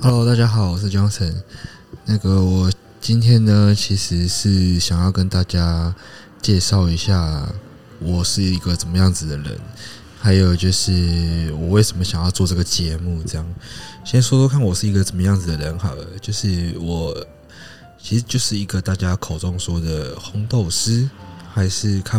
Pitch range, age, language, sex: 85-105 Hz, 20-39, Chinese, male